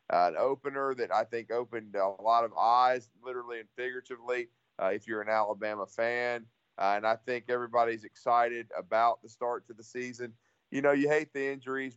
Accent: American